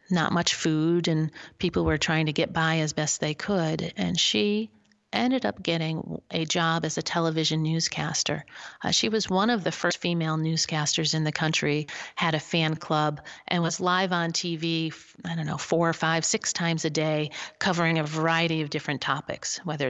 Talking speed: 190 wpm